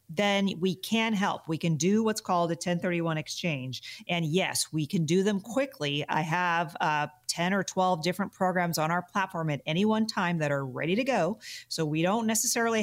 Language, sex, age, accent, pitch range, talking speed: English, female, 40-59, American, 160-195 Hz, 200 wpm